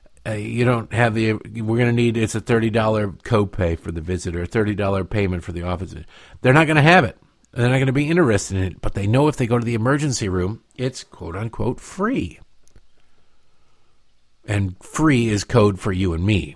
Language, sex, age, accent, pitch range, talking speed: English, male, 50-69, American, 95-130 Hz, 205 wpm